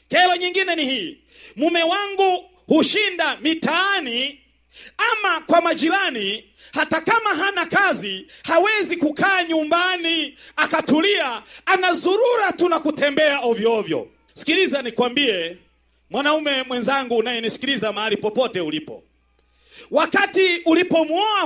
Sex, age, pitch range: male, 40-59, 280-355 Hz